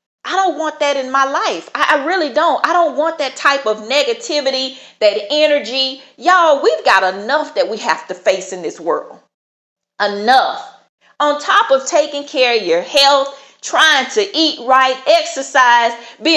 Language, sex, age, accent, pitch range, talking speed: English, female, 40-59, American, 255-310 Hz, 170 wpm